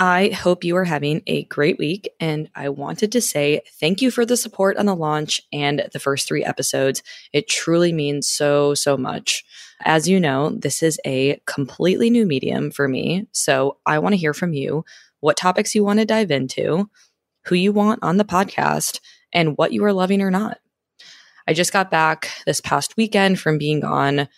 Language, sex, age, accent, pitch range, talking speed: English, female, 20-39, American, 140-180 Hz, 195 wpm